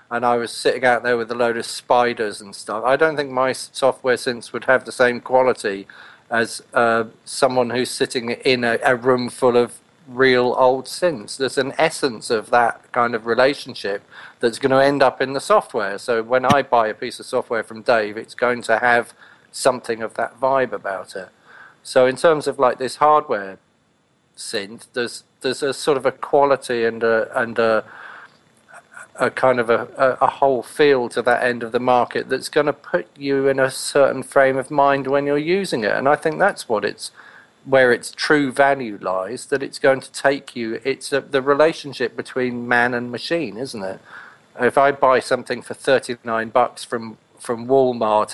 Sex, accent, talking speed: male, British, 195 wpm